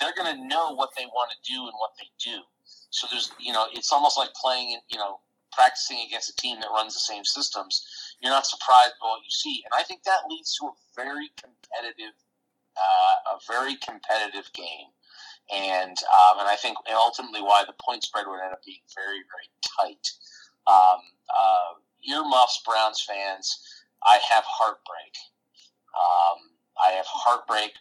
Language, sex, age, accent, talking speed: English, male, 30-49, American, 175 wpm